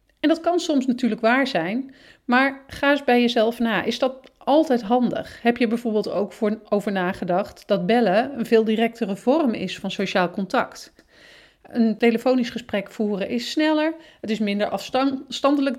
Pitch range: 205-260 Hz